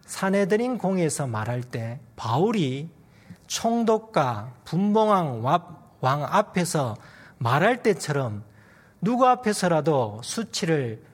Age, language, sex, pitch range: 40-59, Korean, male, 120-185 Hz